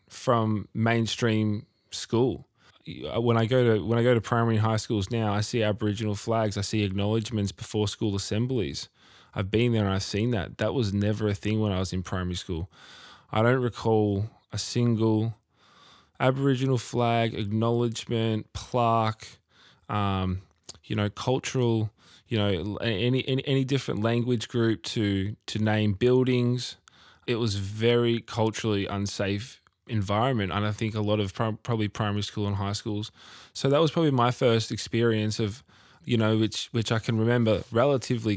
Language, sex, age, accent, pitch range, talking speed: English, male, 20-39, Australian, 100-115 Hz, 160 wpm